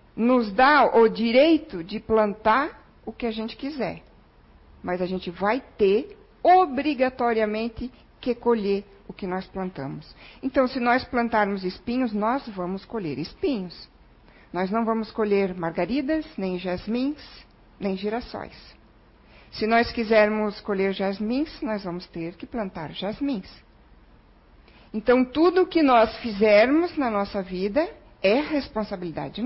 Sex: female